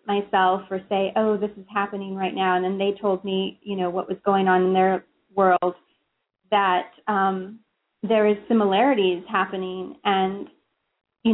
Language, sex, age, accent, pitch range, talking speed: English, female, 30-49, American, 195-220 Hz, 165 wpm